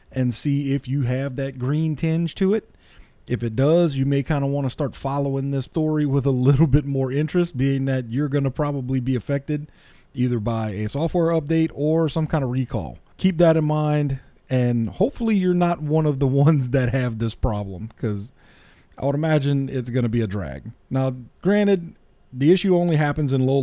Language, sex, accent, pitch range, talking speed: English, male, American, 125-150 Hz, 195 wpm